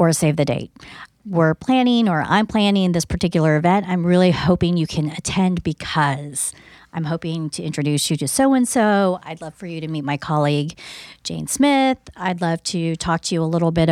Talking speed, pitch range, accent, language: 195 wpm, 160-195 Hz, American, English